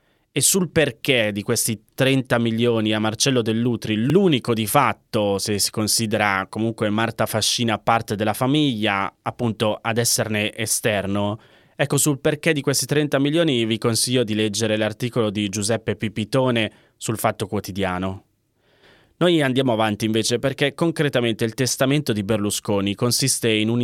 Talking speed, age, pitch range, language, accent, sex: 145 wpm, 20-39, 105-130 Hz, Italian, native, male